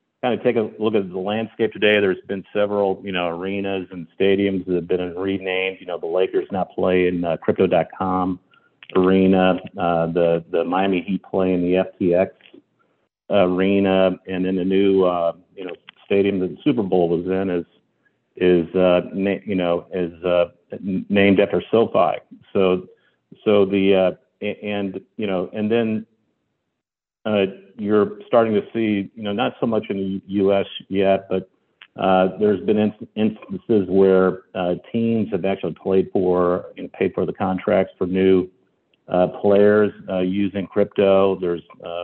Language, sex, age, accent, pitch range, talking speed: English, male, 50-69, American, 90-100 Hz, 170 wpm